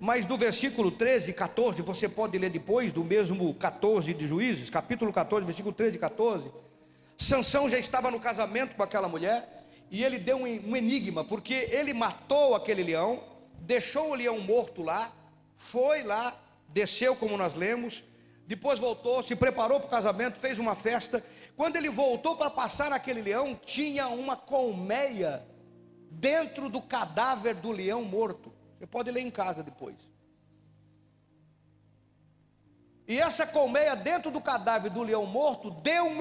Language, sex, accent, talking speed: Portuguese, male, Brazilian, 155 wpm